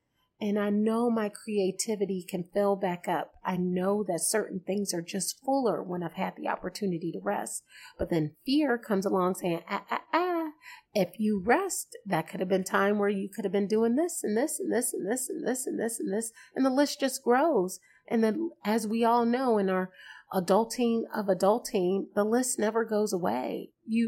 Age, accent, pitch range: 30-49, American, 190-235 Hz